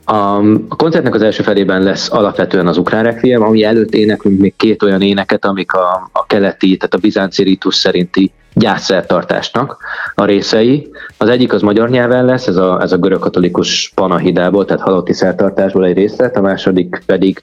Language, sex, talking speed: Hungarian, male, 170 wpm